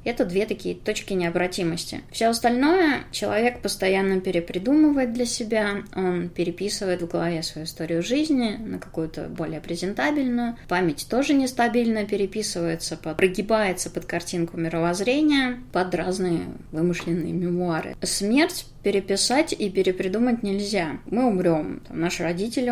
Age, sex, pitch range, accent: 20-39, female, 180-235 Hz, native